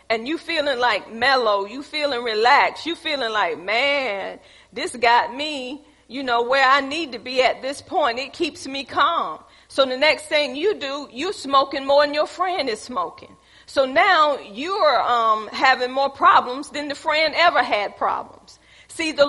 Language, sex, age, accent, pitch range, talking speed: English, female, 40-59, American, 255-325 Hz, 185 wpm